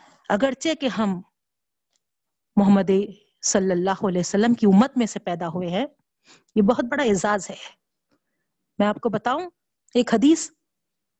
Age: 50-69